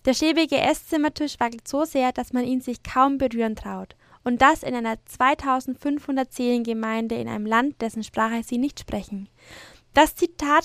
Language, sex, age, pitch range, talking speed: German, female, 10-29, 230-270 Hz, 170 wpm